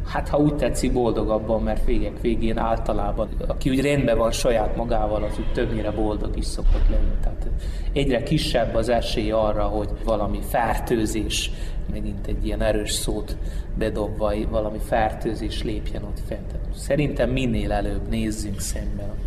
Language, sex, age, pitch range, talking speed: Hungarian, male, 30-49, 105-130 Hz, 155 wpm